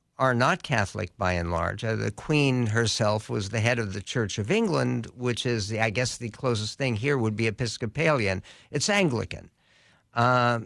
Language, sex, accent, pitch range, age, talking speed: English, male, American, 120-145 Hz, 60-79, 185 wpm